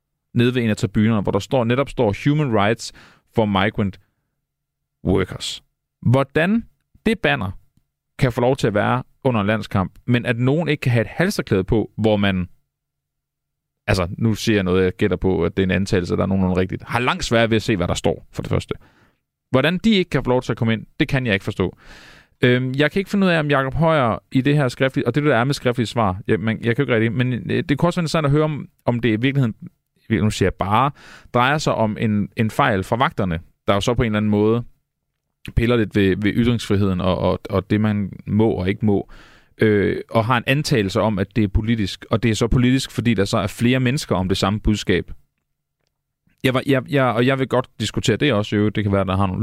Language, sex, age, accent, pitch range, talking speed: Danish, male, 30-49, native, 100-130 Hz, 245 wpm